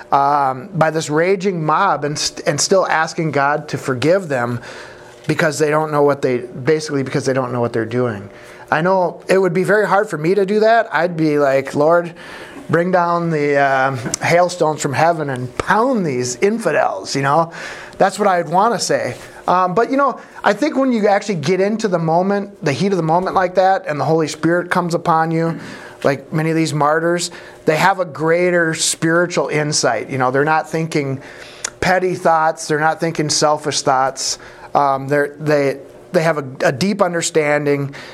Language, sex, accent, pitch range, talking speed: English, male, American, 145-185 Hz, 190 wpm